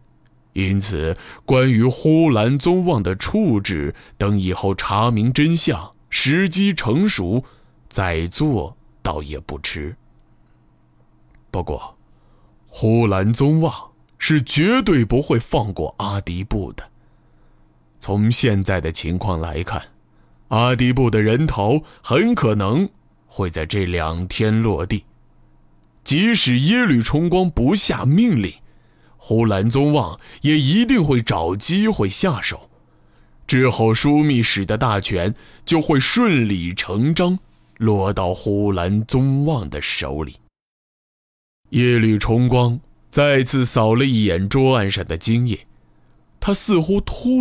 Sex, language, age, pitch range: male, Chinese, 20-39, 85-140 Hz